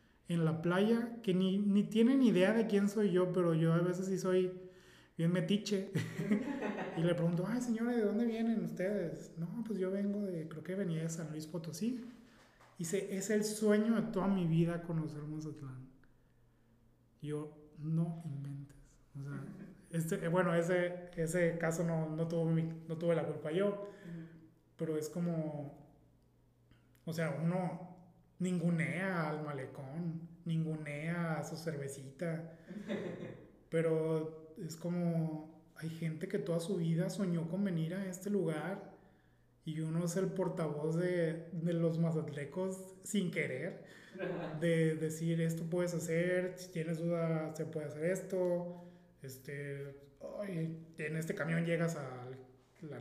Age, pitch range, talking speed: 30-49, 155-185 Hz, 145 wpm